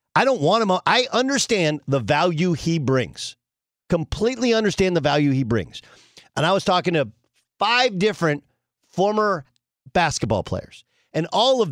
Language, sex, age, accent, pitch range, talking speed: English, male, 40-59, American, 120-195 Hz, 150 wpm